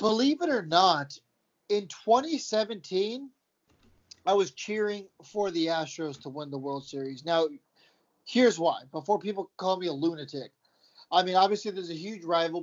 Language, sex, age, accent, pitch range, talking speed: English, male, 30-49, American, 155-210 Hz, 155 wpm